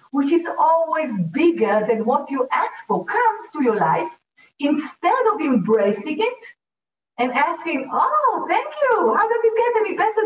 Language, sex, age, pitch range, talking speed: English, female, 50-69, 205-310 Hz, 165 wpm